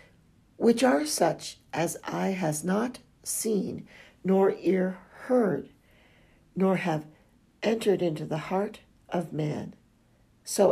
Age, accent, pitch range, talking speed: 60-79, American, 170-215 Hz, 110 wpm